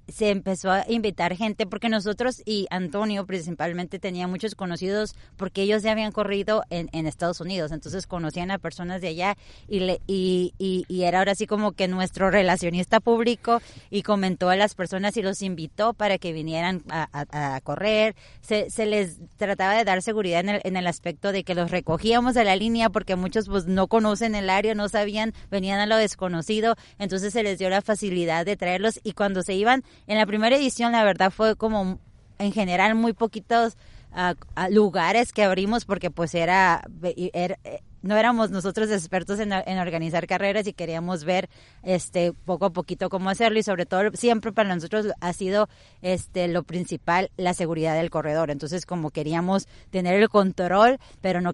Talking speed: 185 wpm